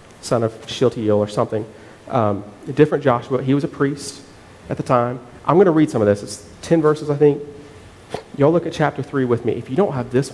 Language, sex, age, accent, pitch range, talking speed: English, male, 40-59, American, 105-135 Hz, 230 wpm